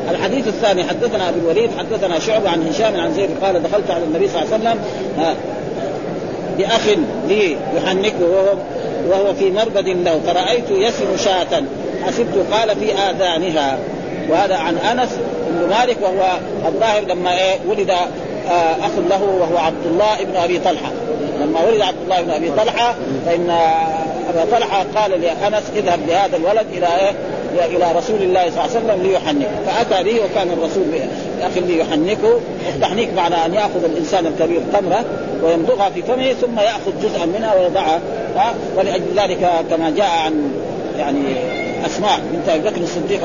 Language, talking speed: Arabic, 150 wpm